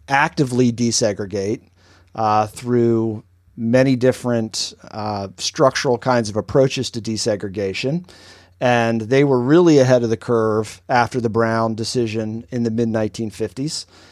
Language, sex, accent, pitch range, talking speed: English, male, American, 105-130 Hz, 120 wpm